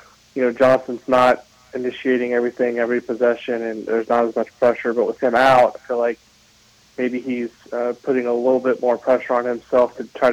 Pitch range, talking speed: 120-130 Hz, 200 wpm